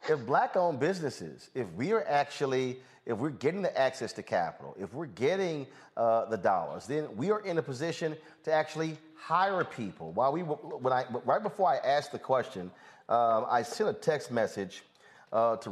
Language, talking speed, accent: English, 185 wpm, American